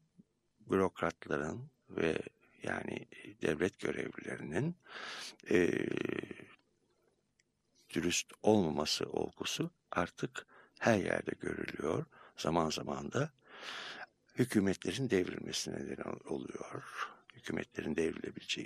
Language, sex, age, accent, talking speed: Turkish, male, 60-79, native, 70 wpm